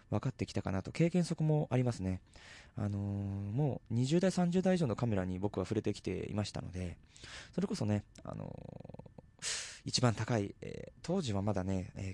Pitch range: 95-120 Hz